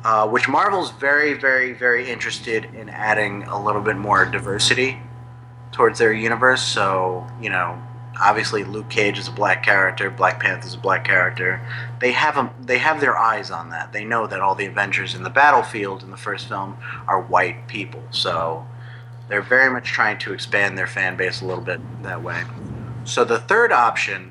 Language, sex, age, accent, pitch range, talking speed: English, male, 30-49, American, 115-125 Hz, 185 wpm